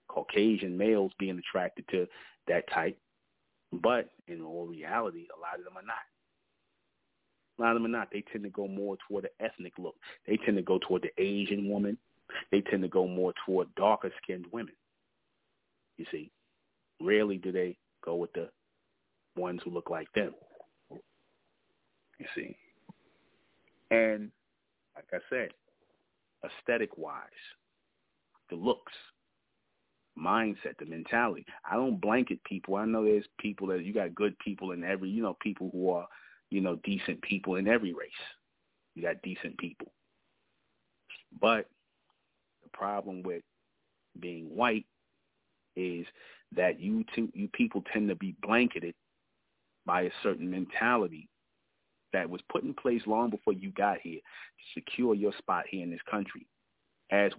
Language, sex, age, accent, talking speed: English, male, 30-49, American, 150 wpm